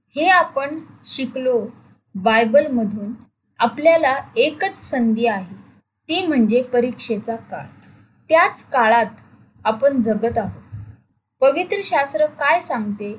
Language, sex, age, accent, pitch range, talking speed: Marathi, female, 20-39, native, 225-290 Hz, 90 wpm